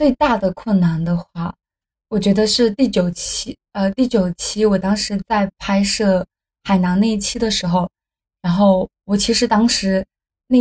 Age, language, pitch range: 20-39, Chinese, 190-235 Hz